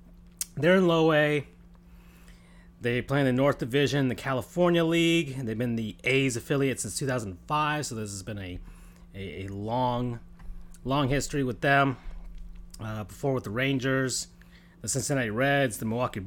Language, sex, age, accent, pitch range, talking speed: English, male, 30-49, American, 90-140 Hz, 155 wpm